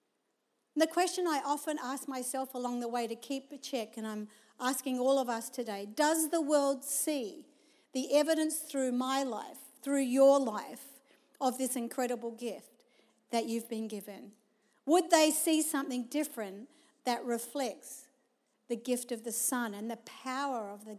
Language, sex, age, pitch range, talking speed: English, female, 50-69, 225-285 Hz, 165 wpm